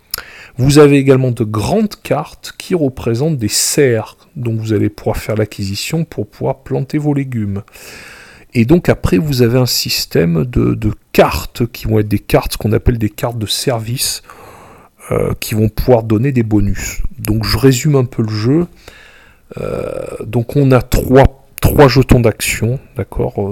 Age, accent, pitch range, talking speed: 40-59, French, 110-130 Hz, 165 wpm